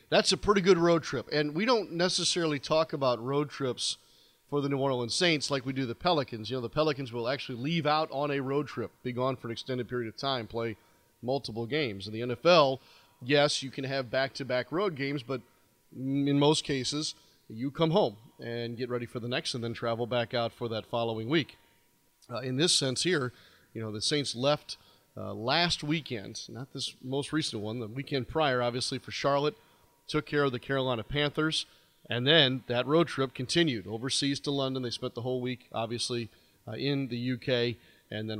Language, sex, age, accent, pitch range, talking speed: English, male, 40-59, American, 115-145 Hz, 205 wpm